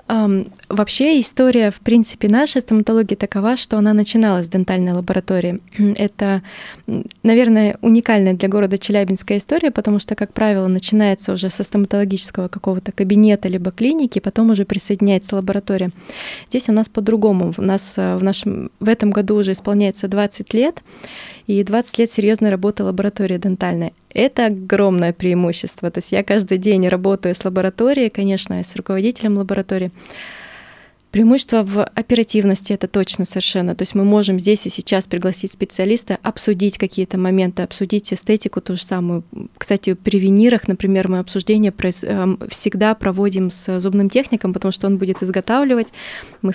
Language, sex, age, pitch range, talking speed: Russian, female, 20-39, 190-215 Hz, 150 wpm